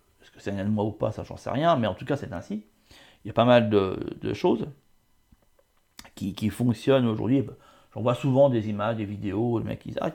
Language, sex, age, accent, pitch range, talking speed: French, male, 40-59, French, 110-145 Hz, 220 wpm